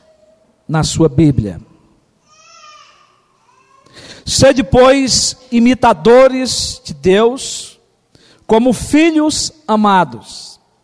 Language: Portuguese